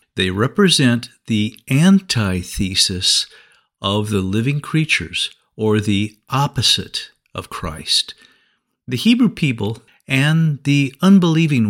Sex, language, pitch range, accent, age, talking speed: male, English, 105-155 Hz, American, 50-69, 95 wpm